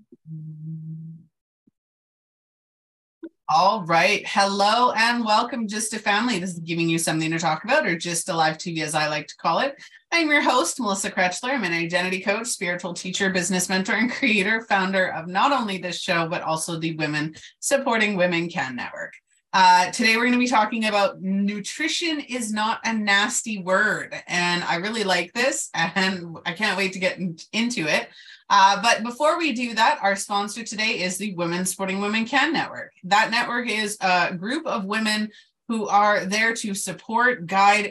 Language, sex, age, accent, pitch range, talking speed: English, female, 30-49, American, 180-235 Hz, 175 wpm